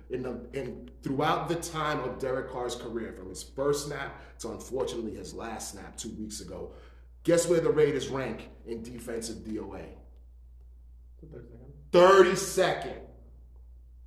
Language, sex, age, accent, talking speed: English, male, 30-49, American, 130 wpm